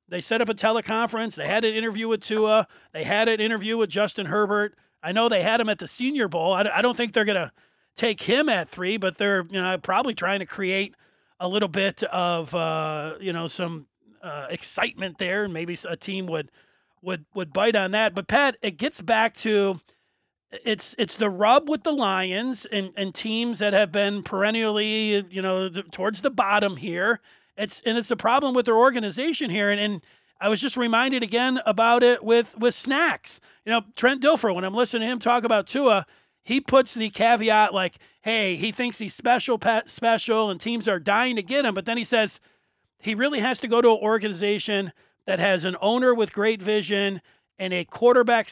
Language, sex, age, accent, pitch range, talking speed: English, male, 40-59, American, 195-235 Hz, 205 wpm